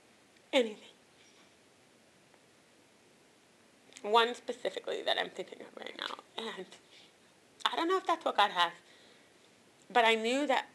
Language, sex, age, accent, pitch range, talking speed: English, female, 30-49, American, 210-290 Hz, 125 wpm